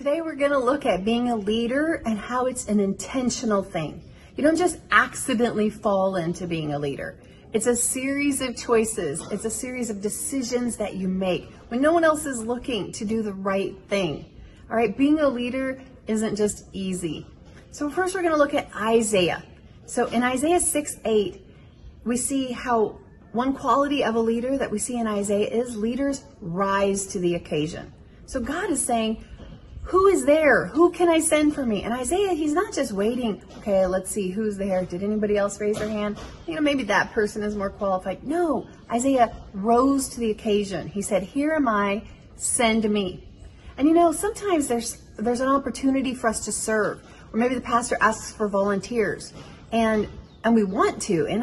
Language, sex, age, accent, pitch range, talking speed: English, female, 30-49, American, 205-275 Hz, 190 wpm